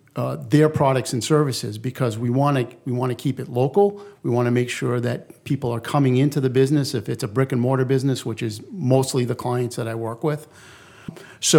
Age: 50-69